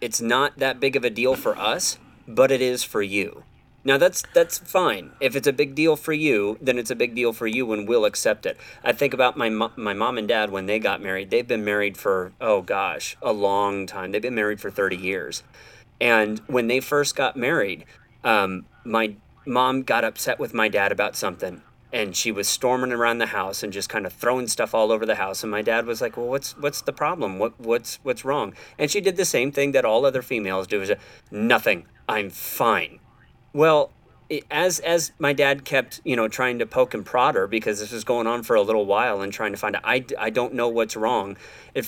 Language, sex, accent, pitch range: English, male, American, 110-140 Hz